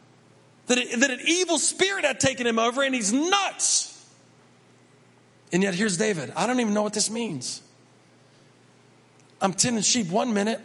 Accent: American